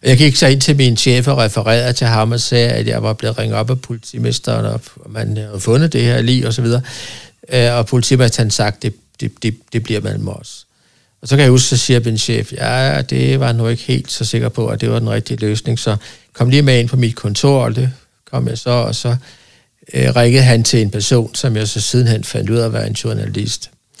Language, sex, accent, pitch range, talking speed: Danish, male, native, 110-130 Hz, 245 wpm